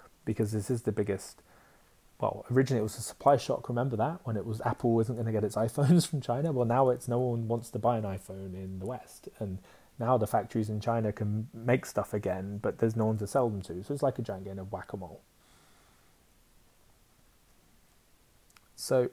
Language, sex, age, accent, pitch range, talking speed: English, male, 30-49, British, 100-120 Hz, 200 wpm